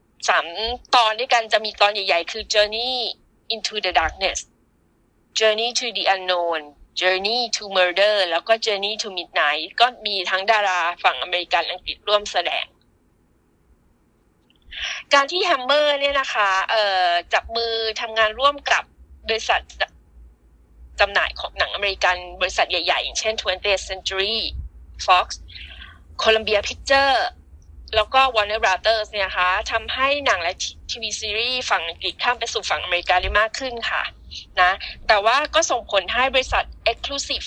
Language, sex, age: Thai, female, 20-39